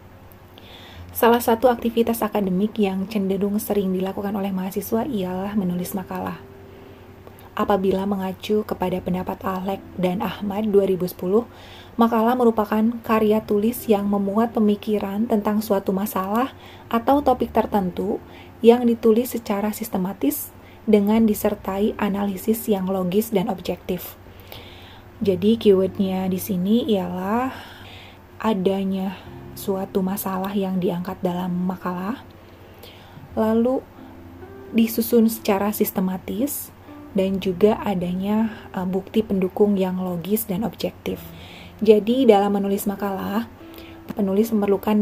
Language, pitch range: Indonesian, 185-215 Hz